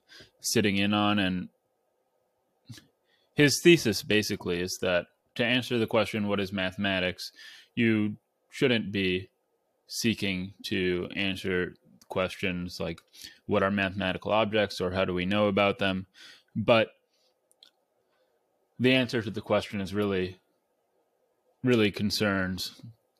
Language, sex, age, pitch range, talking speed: English, male, 20-39, 95-105 Hz, 115 wpm